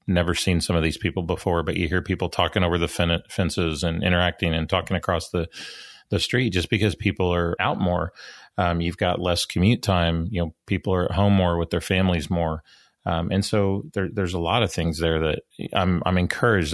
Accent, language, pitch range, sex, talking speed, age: American, English, 85-95 Hz, male, 215 wpm, 30-49